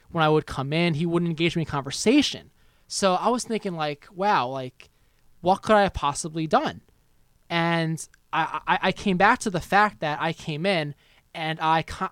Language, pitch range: English, 160-210 Hz